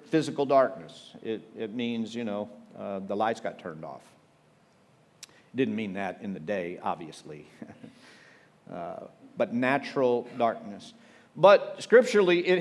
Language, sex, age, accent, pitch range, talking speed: English, male, 50-69, American, 130-180 Hz, 130 wpm